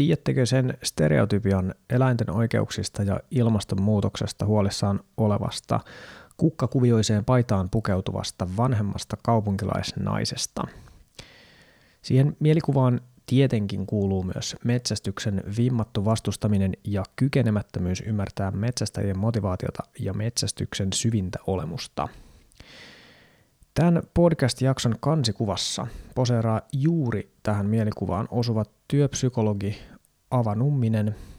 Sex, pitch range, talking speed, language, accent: male, 105-130 Hz, 80 wpm, Finnish, native